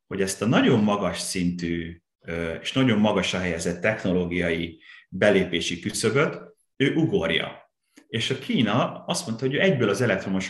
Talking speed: 135 wpm